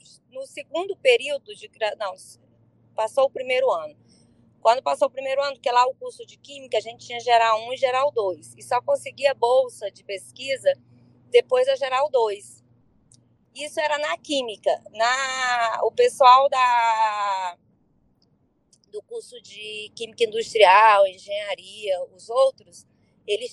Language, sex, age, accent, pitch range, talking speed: Portuguese, female, 20-39, Brazilian, 220-295 Hz, 140 wpm